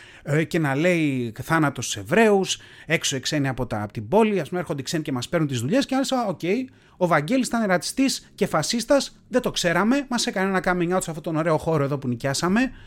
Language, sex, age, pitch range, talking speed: Greek, male, 30-49, 130-205 Hz, 215 wpm